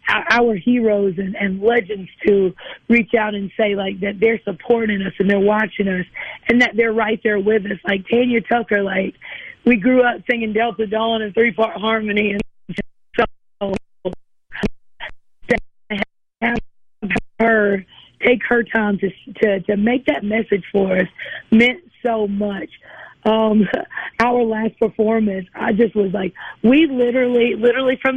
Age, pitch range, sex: 40-59, 205-240 Hz, female